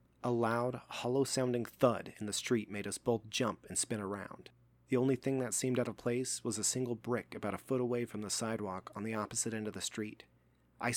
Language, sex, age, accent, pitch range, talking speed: English, male, 30-49, American, 100-120 Hz, 225 wpm